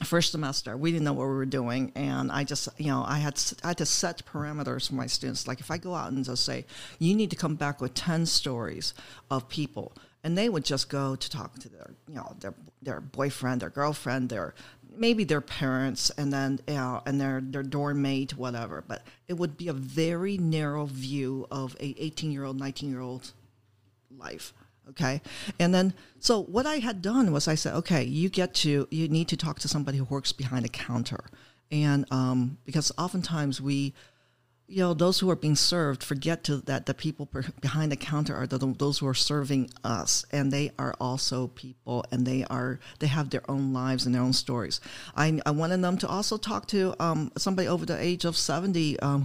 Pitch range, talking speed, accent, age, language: 130-160 Hz, 210 wpm, American, 50-69, English